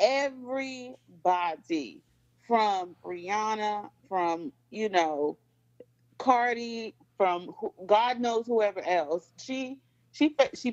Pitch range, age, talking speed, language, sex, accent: 180-235 Hz, 30-49, 90 wpm, English, female, American